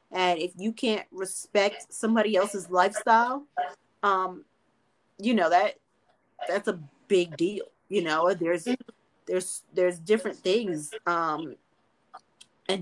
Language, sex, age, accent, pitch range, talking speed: English, female, 20-39, American, 180-240 Hz, 115 wpm